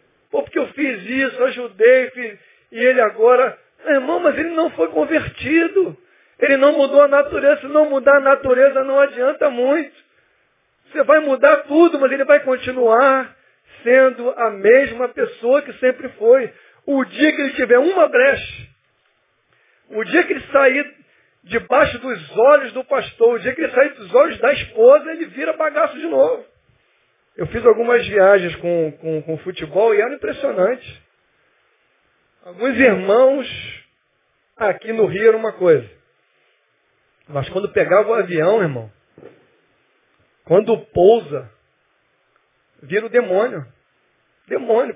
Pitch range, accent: 230-305 Hz, Brazilian